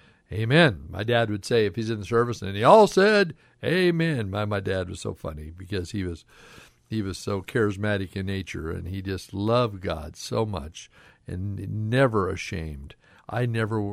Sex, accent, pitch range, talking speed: male, American, 100-150 Hz, 180 wpm